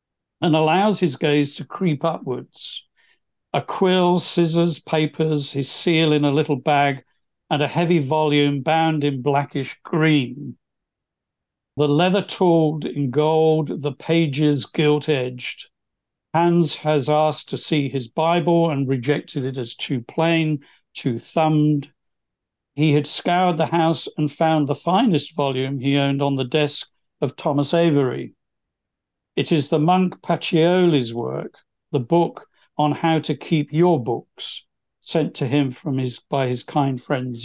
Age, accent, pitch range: 60-79, British, 140-160 Hz